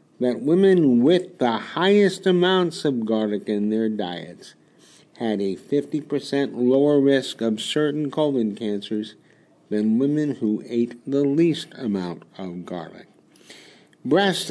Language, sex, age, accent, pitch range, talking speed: English, male, 50-69, American, 115-150 Hz, 125 wpm